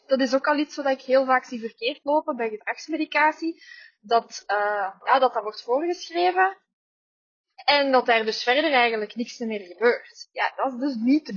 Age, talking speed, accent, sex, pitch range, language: 20-39, 185 wpm, Dutch, female, 225-295 Hz, Dutch